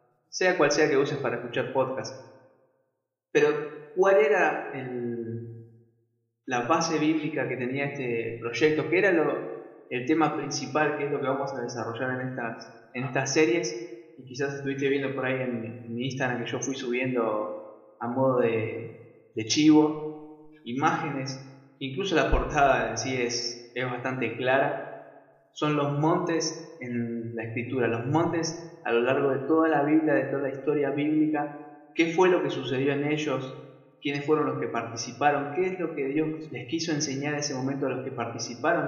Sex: male